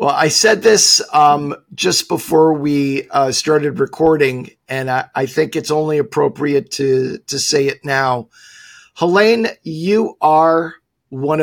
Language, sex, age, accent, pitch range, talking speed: English, male, 50-69, American, 140-160 Hz, 140 wpm